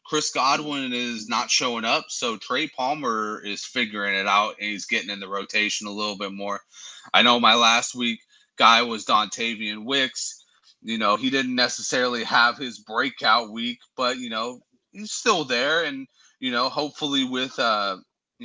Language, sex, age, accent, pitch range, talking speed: English, male, 30-49, American, 110-155 Hz, 170 wpm